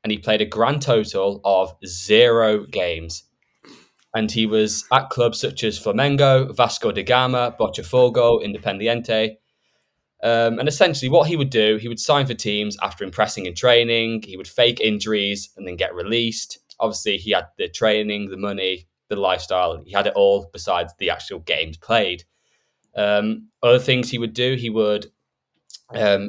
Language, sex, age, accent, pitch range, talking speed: English, male, 20-39, British, 100-120 Hz, 165 wpm